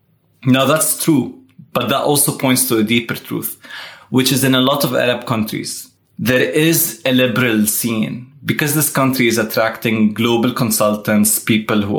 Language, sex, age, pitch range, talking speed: English, male, 20-39, 110-130 Hz, 165 wpm